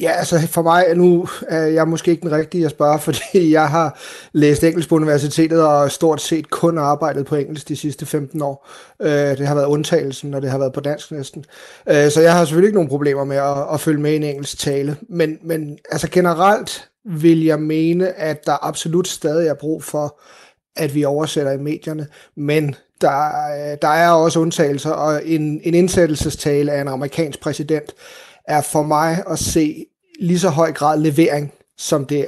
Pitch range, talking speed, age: 145-165 Hz, 190 wpm, 30-49